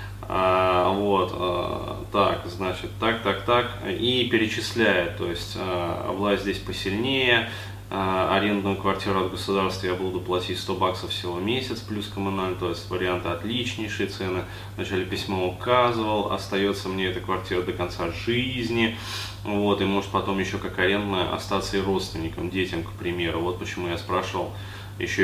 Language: Russian